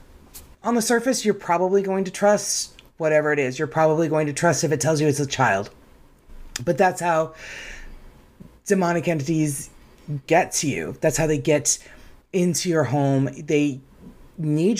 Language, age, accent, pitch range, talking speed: English, 30-49, American, 140-175 Hz, 160 wpm